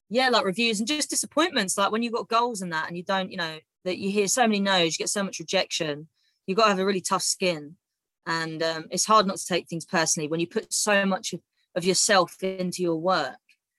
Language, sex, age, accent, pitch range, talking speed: English, female, 20-39, British, 170-220 Hz, 250 wpm